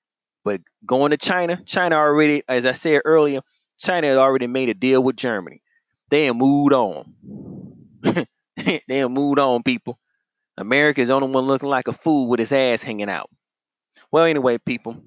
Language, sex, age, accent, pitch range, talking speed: English, male, 30-49, American, 125-150 Hz, 175 wpm